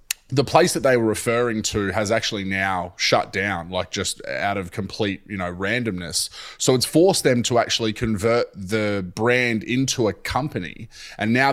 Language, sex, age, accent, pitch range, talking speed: English, male, 20-39, Australian, 95-115 Hz, 175 wpm